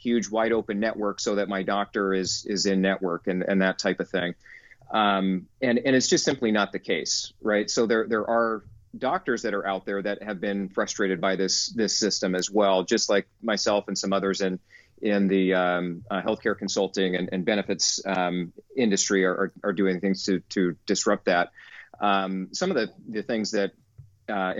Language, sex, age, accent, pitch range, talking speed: English, male, 40-59, American, 95-110 Hz, 200 wpm